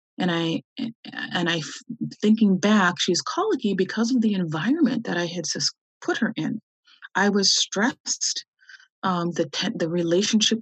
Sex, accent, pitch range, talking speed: female, American, 180-250 Hz, 145 wpm